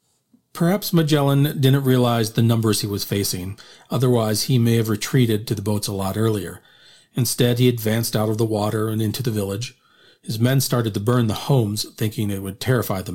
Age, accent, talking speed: 40-59, American, 195 wpm